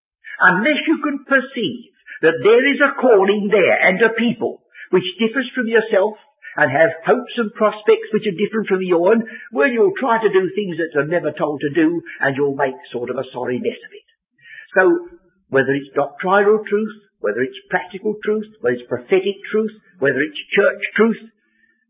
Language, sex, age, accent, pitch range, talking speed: English, male, 60-79, British, 145-240 Hz, 185 wpm